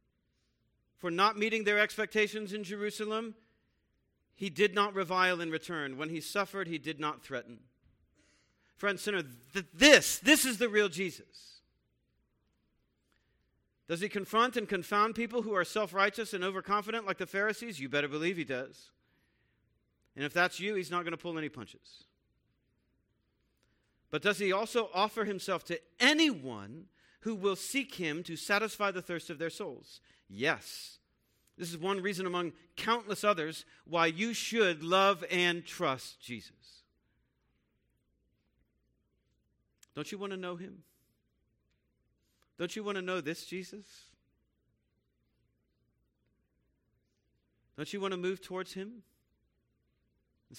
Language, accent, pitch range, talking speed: English, American, 145-205 Hz, 135 wpm